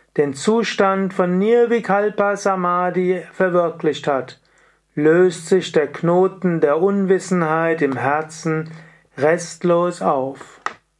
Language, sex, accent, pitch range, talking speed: German, male, German, 155-190 Hz, 95 wpm